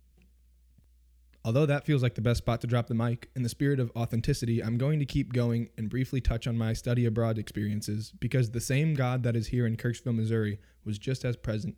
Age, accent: 20-39, American